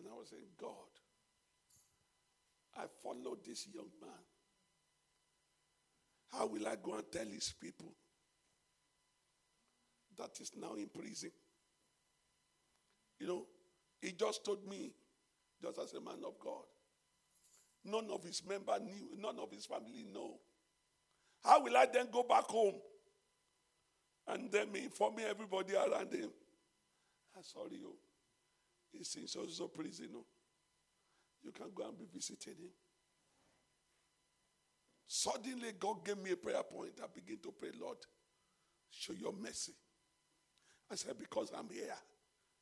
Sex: male